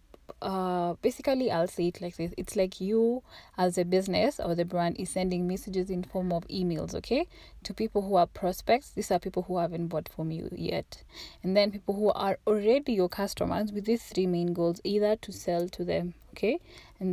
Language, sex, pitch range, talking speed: English, female, 175-205 Hz, 205 wpm